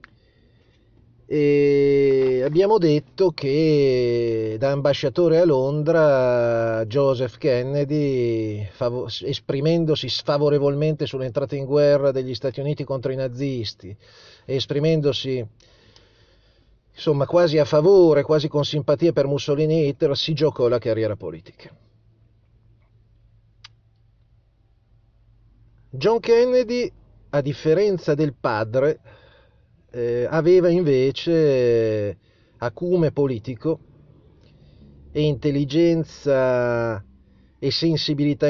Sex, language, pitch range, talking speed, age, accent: male, Italian, 115-150 Hz, 85 wpm, 40-59, native